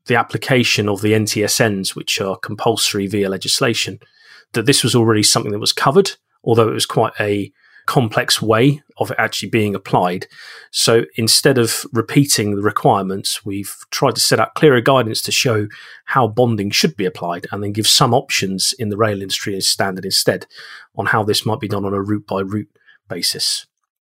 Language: English